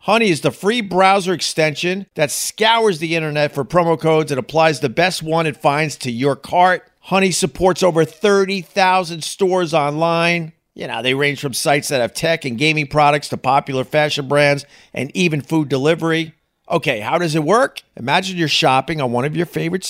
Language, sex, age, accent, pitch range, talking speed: English, male, 50-69, American, 150-190 Hz, 185 wpm